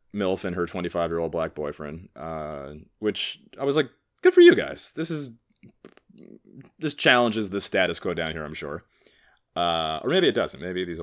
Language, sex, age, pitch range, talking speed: English, male, 30-49, 80-105 Hz, 180 wpm